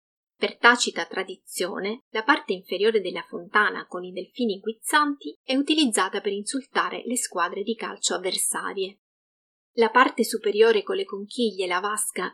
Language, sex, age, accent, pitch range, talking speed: Italian, female, 30-49, native, 195-240 Hz, 140 wpm